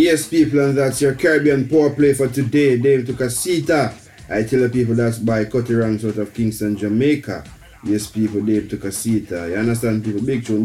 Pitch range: 105-130 Hz